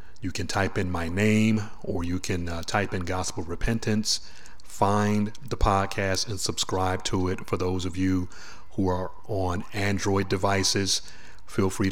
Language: English